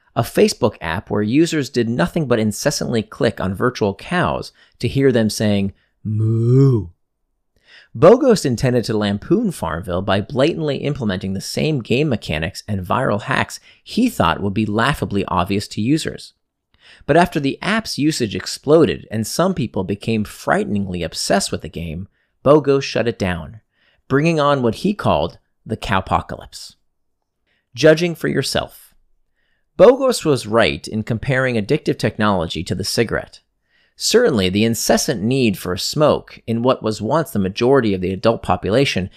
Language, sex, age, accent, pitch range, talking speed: English, male, 40-59, American, 100-135 Hz, 145 wpm